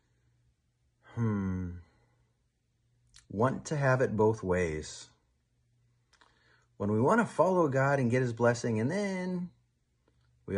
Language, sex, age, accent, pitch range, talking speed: English, male, 40-59, American, 105-130 Hz, 115 wpm